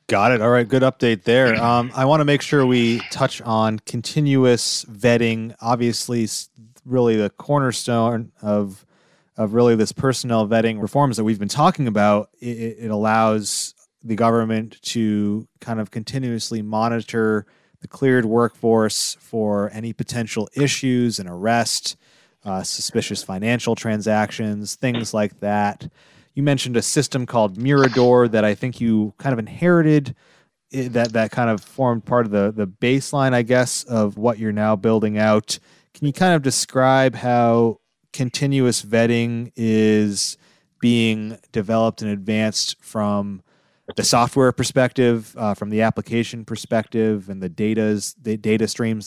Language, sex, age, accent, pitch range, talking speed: English, male, 30-49, American, 110-125 Hz, 145 wpm